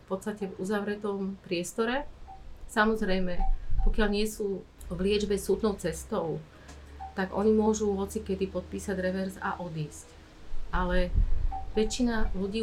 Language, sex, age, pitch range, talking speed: Slovak, female, 30-49, 180-210 Hz, 120 wpm